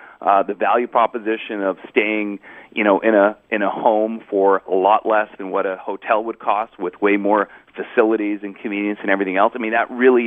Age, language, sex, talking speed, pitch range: 40-59, English, male, 210 wpm, 100-115 Hz